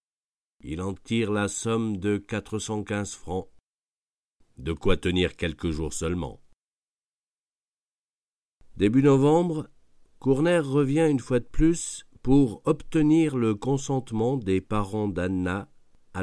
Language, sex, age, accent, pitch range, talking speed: French, male, 50-69, French, 90-130 Hz, 110 wpm